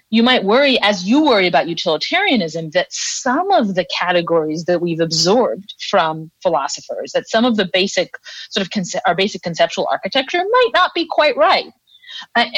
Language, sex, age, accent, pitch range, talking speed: English, female, 30-49, American, 190-265 Hz, 165 wpm